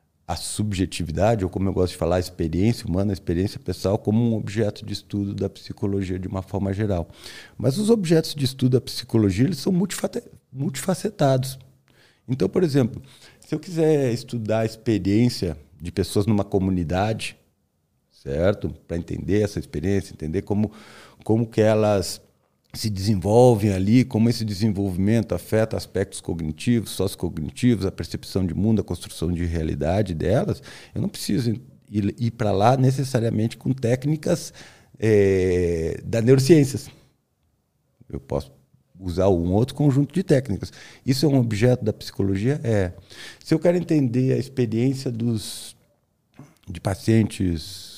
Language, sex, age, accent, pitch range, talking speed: Portuguese, male, 40-59, Brazilian, 95-125 Hz, 145 wpm